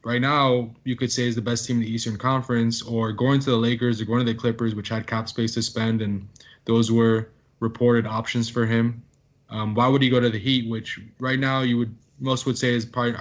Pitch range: 110-125 Hz